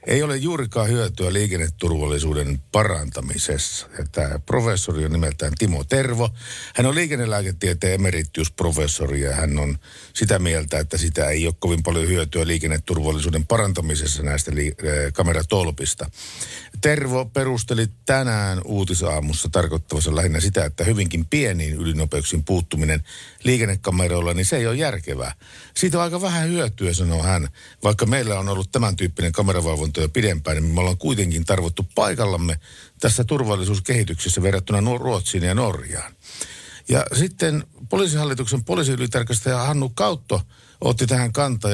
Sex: male